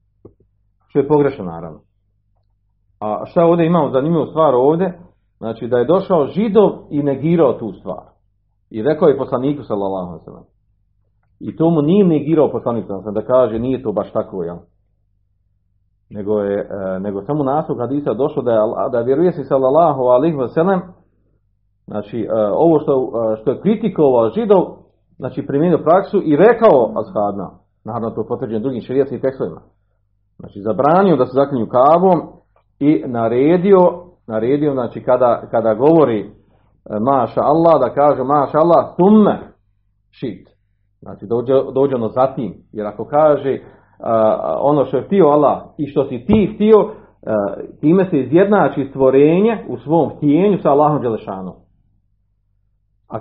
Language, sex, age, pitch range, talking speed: Croatian, male, 40-59, 105-155 Hz, 145 wpm